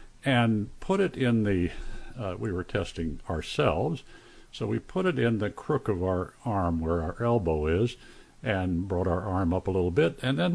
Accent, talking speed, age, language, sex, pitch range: American, 195 wpm, 50-69, English, male, 85-115 Hz